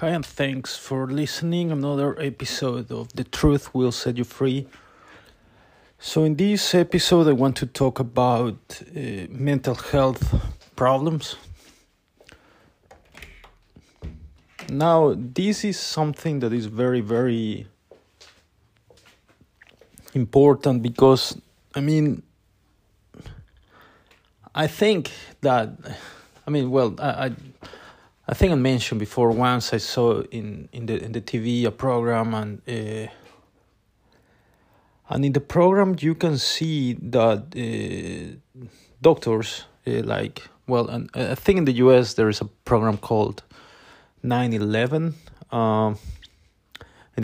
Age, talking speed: 30-49, 115 wpm